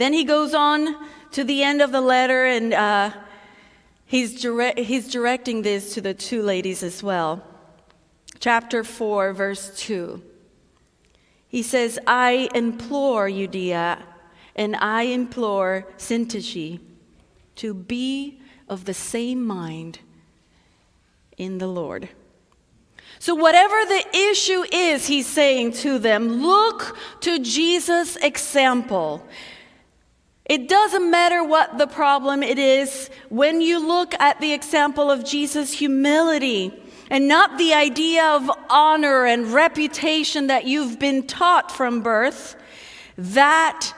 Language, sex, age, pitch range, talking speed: English, female, 40-59, 215-300 Hz, 120 wpm